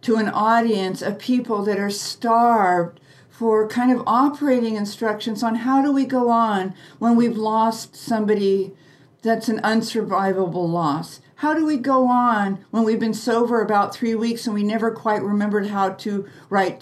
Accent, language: American, English